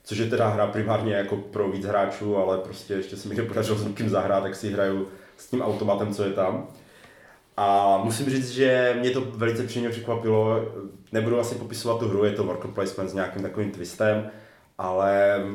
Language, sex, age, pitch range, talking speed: Czech, male, 30-49, 100-115 Hz, 195 wpm